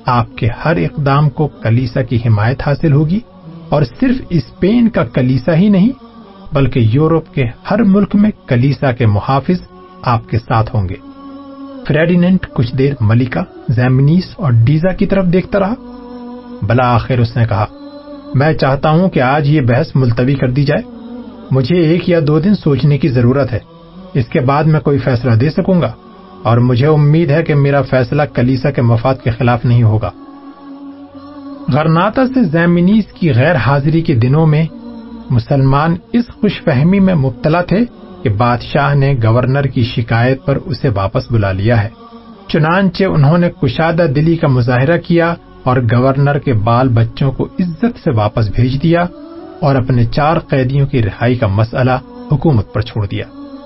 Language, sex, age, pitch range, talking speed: Urdu, male, 40-59, 125-185 Hz, 165 wpm